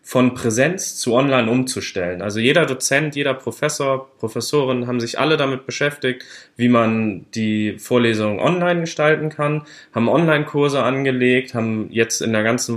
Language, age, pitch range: German, 20-39, 110-135 Hz